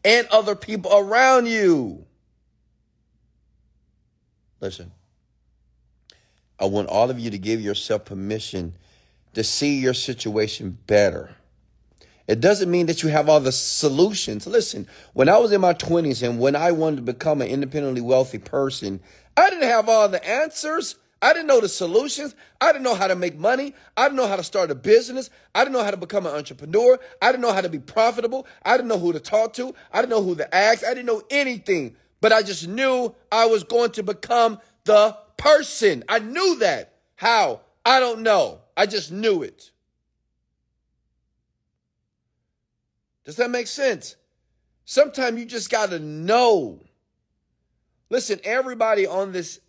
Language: English